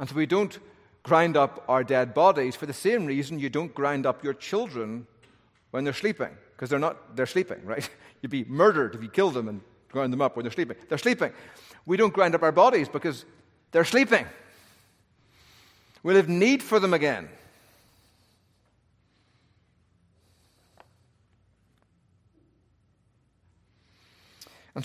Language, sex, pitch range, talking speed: English, male, 100-130 Hz, 145 wpm